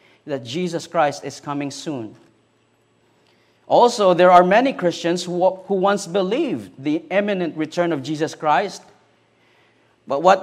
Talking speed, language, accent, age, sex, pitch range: 130 wpm, English, Filipino, 40-59, male, 155-200 Hz